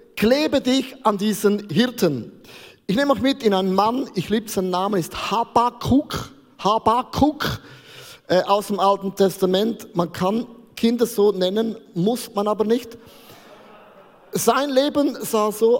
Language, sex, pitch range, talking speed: German, male, 190-240 Hz, 140 wpm